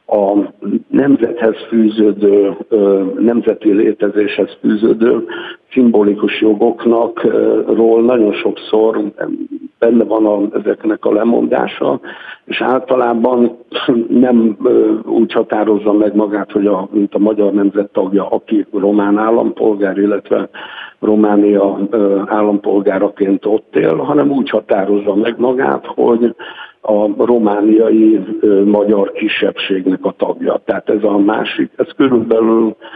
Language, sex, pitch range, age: Hungarian, male, 100-115 Hz, 60-79